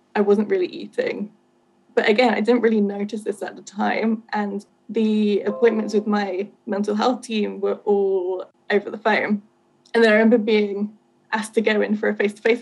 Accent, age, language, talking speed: British, 10-29, English, 185 wpm